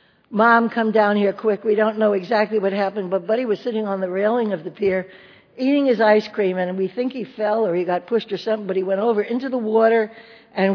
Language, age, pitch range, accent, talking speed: English, 60-79, 175-220 Hz, American, 245 wpm